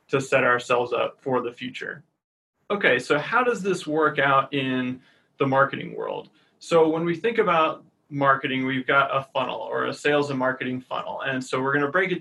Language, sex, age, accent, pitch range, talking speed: English, male, 30-49, American, 135-165 Hz, 200 wpm